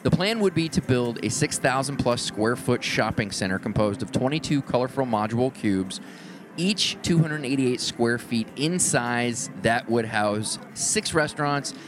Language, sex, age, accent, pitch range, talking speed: English, male, 30-49, American, 105-145 Hz, 150 wpm